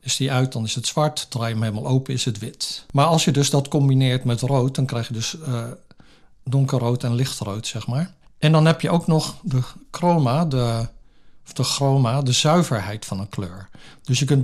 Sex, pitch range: male, 120-140 Hz